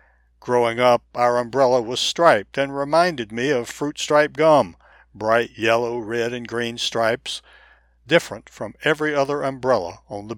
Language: English